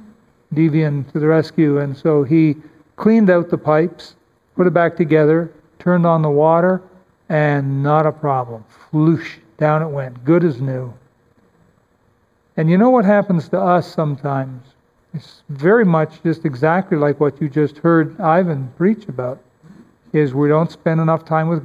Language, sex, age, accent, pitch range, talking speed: English, male, 50-69, American, 140-165 Hz, 160 wpm